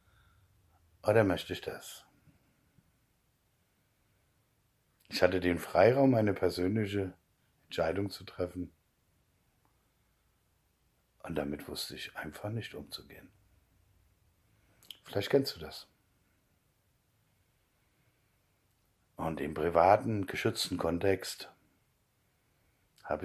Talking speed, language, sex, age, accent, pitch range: 75 wpm, German, male, 60-79, German, 90-125 Hz